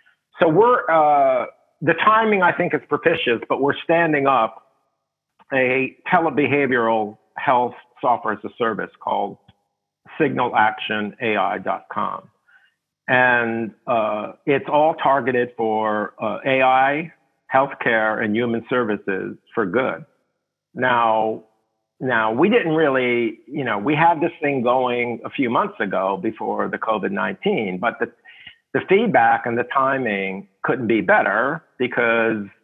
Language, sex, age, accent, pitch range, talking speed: English, male, 50-69, American, 110-140 Hz, 120 wpm